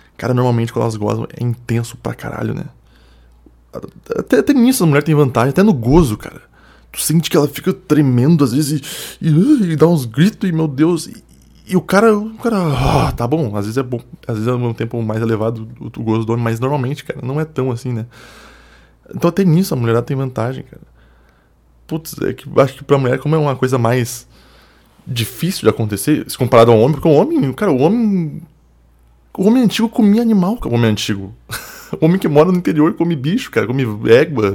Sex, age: male, 20-39